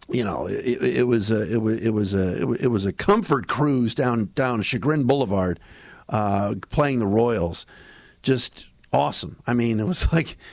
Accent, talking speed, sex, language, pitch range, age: American, 170 wpm, male, English, 105-130 Hz, 50-69